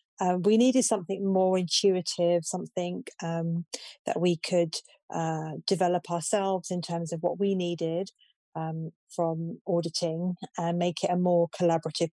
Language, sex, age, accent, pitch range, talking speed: English, female, 30-49, British, 165-185 Hz, 145 wpm